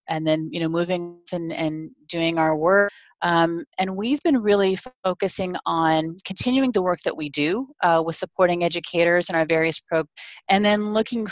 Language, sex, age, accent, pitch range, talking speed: English, female, 30-49, American, 155-190 Hz, 180 wpm